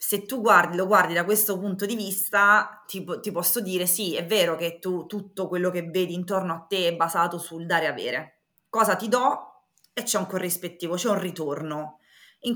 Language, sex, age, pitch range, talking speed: Italian, female, 20-39, 180-225 Hz, 205 wpm